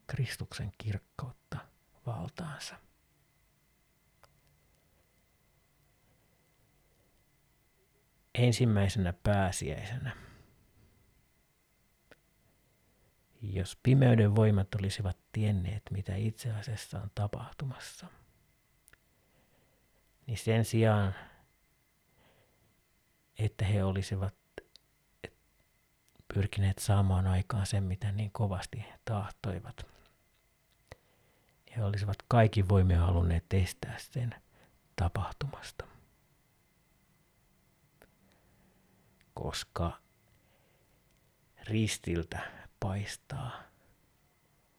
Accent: native